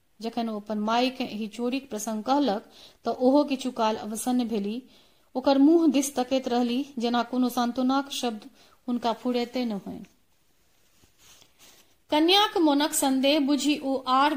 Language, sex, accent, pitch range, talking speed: Hindi, female, native, 240-290 Hz, 130 wpm